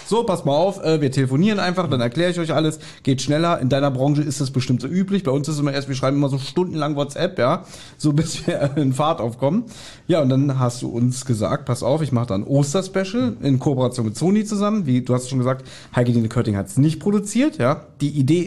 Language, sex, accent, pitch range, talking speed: German, male, German, 140-180 Hz, 240 wpm